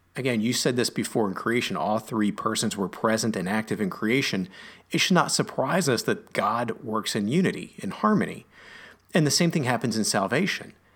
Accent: American